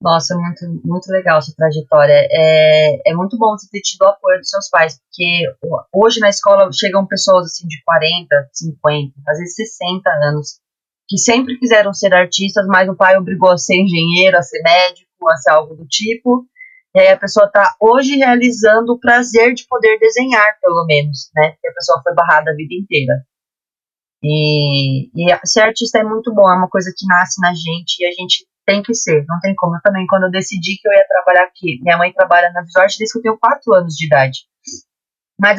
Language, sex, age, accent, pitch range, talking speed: Portuguese, female, 30-49, Brazilian, 170-225 Hz, 205 wpm